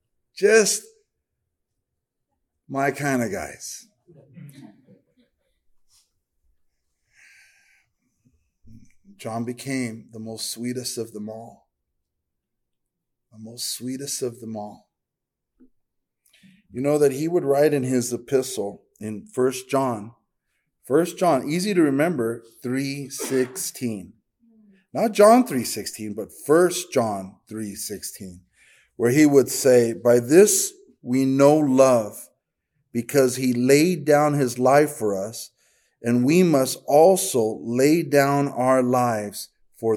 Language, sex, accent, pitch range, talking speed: English, male, American, 115-175 Hz, 105 wpm